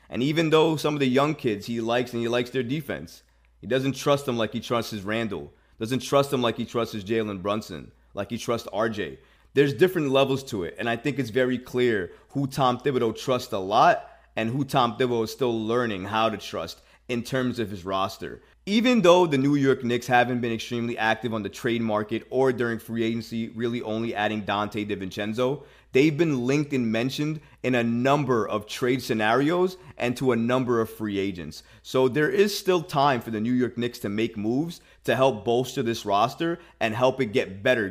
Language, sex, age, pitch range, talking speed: English, male, 30-49, 105-135 Hz, 210 wpm